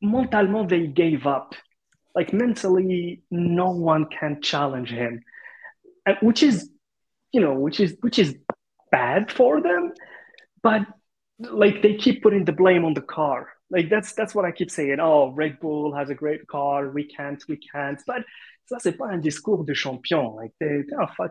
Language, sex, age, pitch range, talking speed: Arabic, male, 20-39, 150-205 Hz, 165 wpm